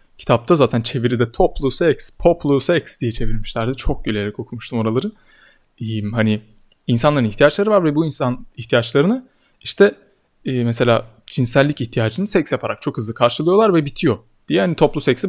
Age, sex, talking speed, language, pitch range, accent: 30-49, male, 150 wpm, Turkish, 115-145 Hz, native